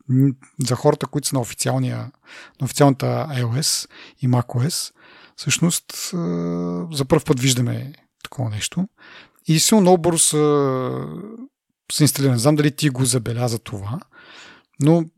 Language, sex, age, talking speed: English, male, 40-59, 120 wpm